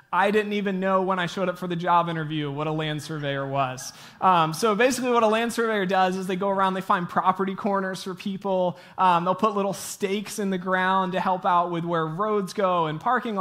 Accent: American